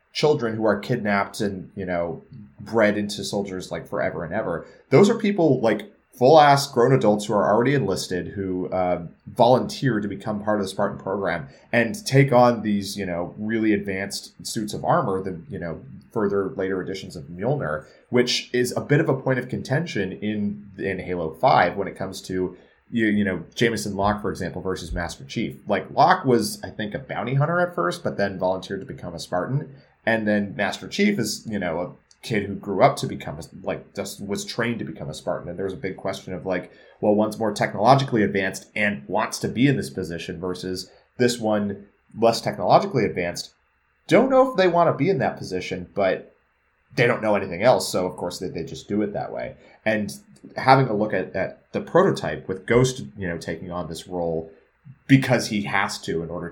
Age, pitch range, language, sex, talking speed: 30-49, 90-120 Hz, English, male, 205 wpm